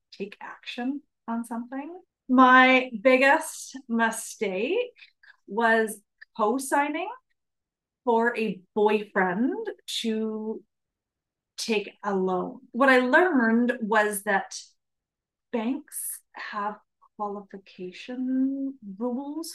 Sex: female